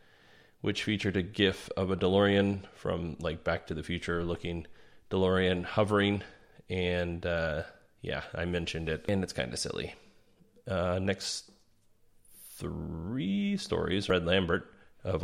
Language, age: English, 30-49